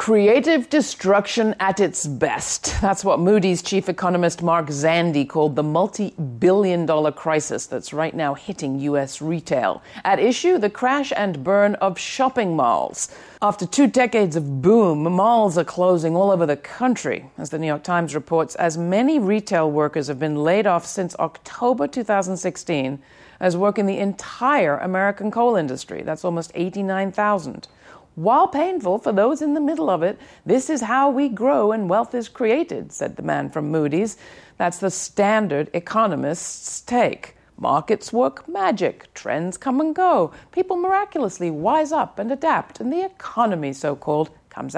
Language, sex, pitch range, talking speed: English, female, 165-240 Hz, 160 wpm